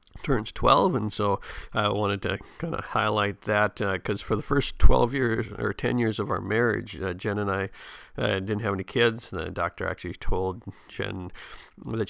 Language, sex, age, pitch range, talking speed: English, male, 50-69, 95-115 Hz, 195 wpm